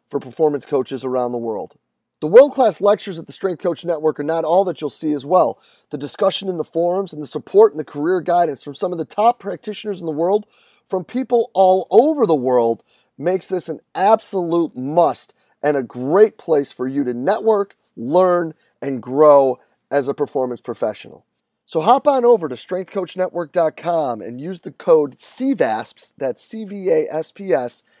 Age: 30-49